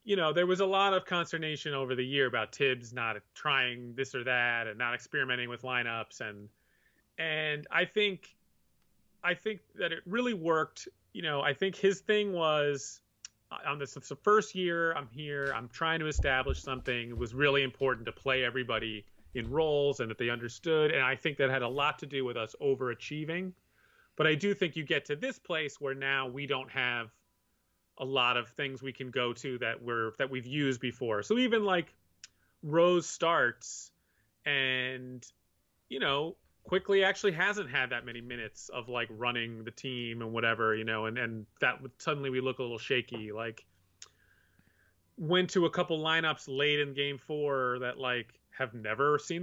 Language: English